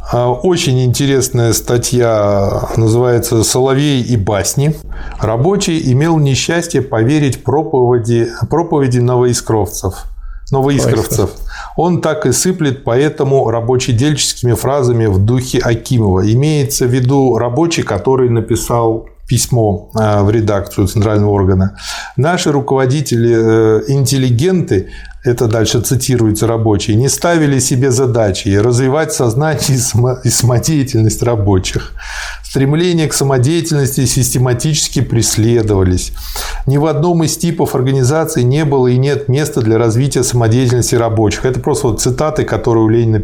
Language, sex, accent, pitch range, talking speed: Russian, male, native, 115-140 Hz, 110 wpm